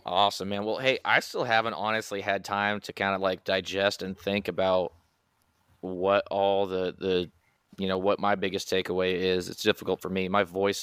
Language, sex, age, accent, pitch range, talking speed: English, male, 20-39, American, 95-100 Hz, 195 wpm